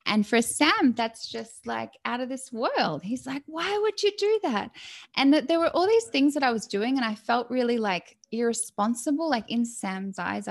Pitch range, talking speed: 180-250 Hz, 215 wpm